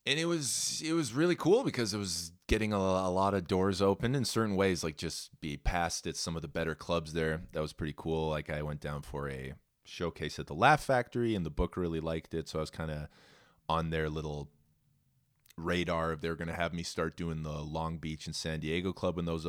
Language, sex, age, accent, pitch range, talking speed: English, male, 30-49, American, 80-95 Hz, 240 wpm